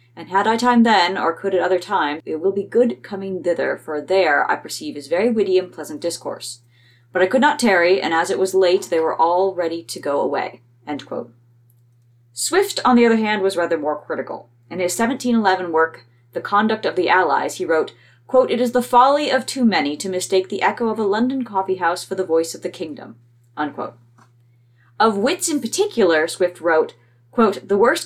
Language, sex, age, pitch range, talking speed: English, female, 30-49, 150-220 Hz, 205 wpm